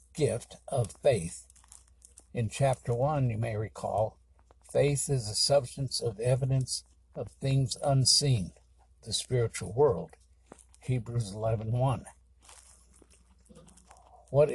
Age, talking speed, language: 60-79, 105 wpm, English